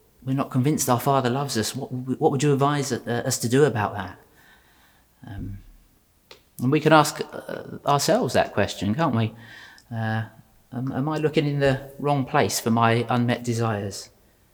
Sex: male